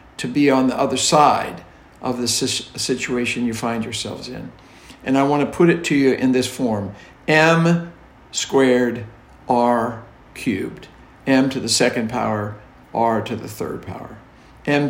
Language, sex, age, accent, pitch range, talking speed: English, male, 50-69, American, 120-135 Hz, 155 wpm